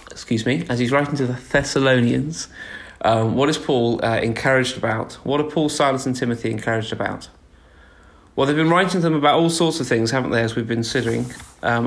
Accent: British